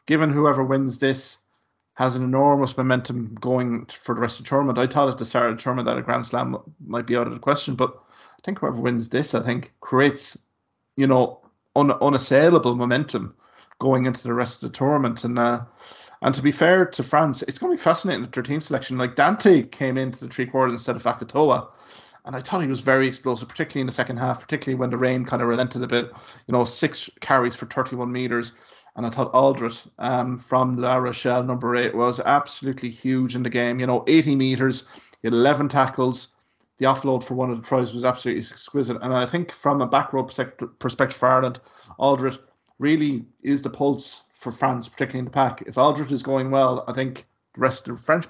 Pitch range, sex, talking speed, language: 125-135 Hz, male, 215 wpm, English